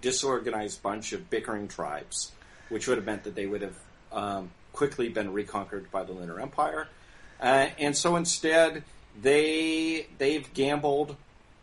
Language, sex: English, male